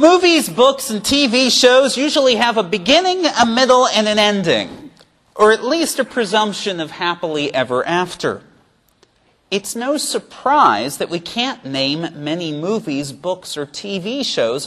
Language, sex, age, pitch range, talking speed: English, male, 40-59, 160-230 Hz, 145 wpm